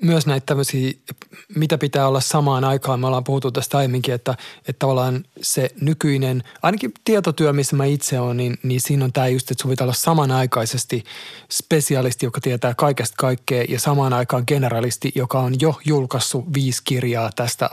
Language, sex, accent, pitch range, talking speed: Finnish, male, native, 130-155 Hz, 180 wpm